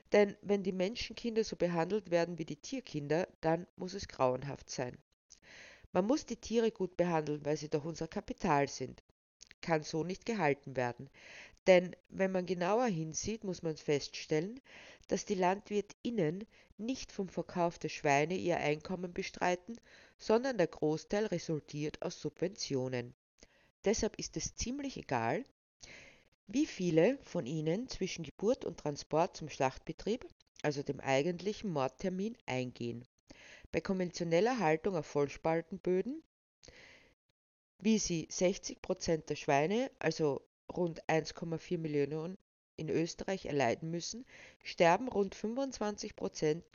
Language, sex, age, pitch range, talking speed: German, female, 50-69, 150-205 Hz, 125 wpm